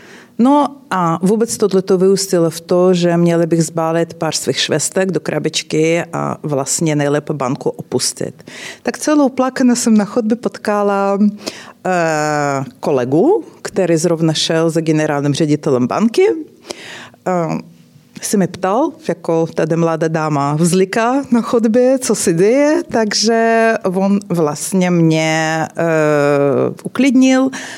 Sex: female